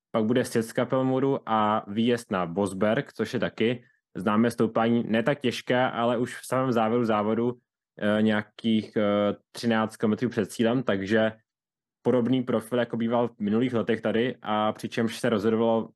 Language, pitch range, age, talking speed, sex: Czech, 105-120 Hz, 20-39, 155 wpm, male